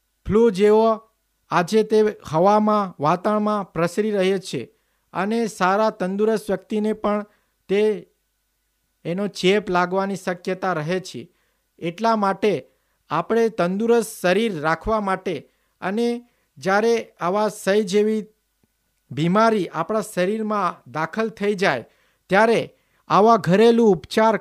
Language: Hindi